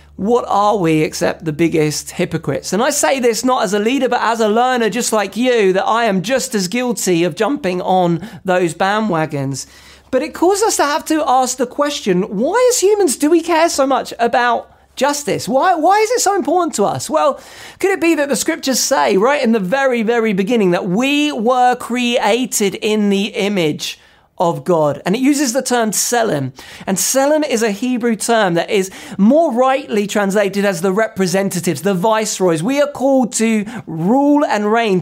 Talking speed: 195 wpm